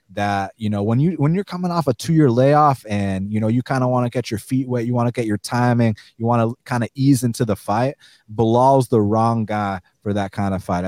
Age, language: 30-49, English